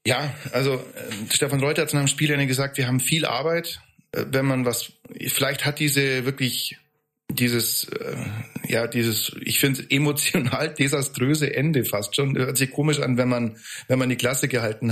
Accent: German